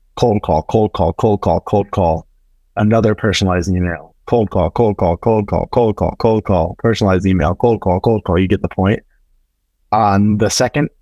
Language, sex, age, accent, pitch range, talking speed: English, male, 30-49, American, 90-115 Hz, 185 wpm